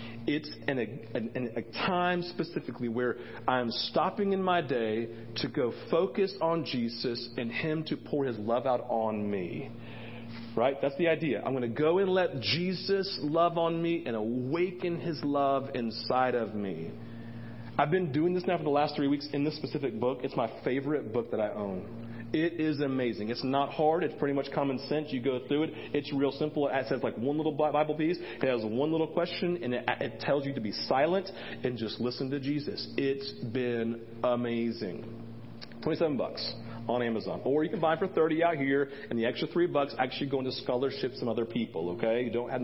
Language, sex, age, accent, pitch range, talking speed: English, male, 40-59, American, 115-155 Hz, 200 wpm